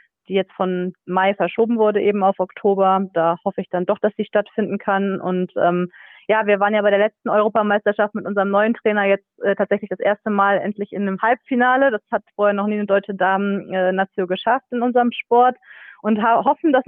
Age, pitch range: 20-39, 180-210 Hz